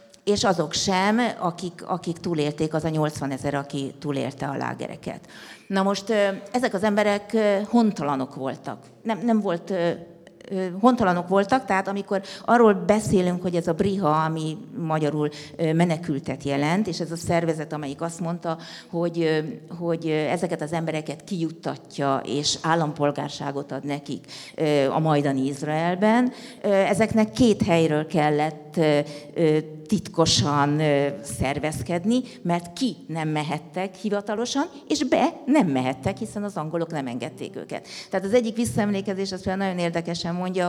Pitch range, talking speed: 155-195 Hz, 130 wpm